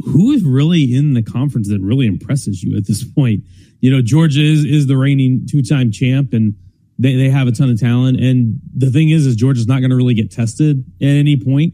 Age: 40-59